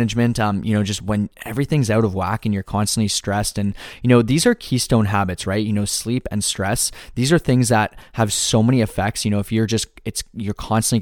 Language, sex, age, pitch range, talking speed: English, male, 20-39, 100-115 Hz, 235 wpm